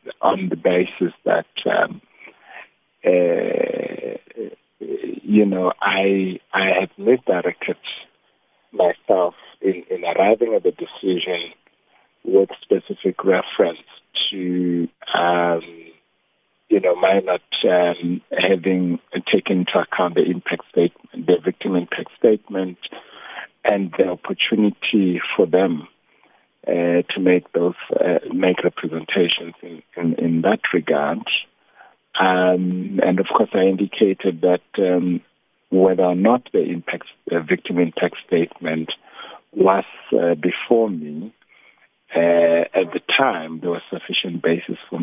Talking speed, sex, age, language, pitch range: 115 wpm, male, 60-79, English, 85-105 Hz